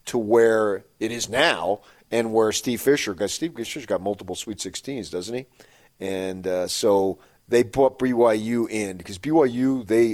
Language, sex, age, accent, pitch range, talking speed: English, male, 40-59, American, 105-125 Hz, 165 wpm